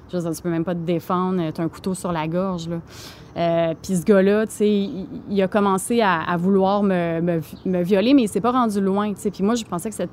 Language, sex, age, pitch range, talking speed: French, female, 30-49, 175-205 Hz, 255 wpm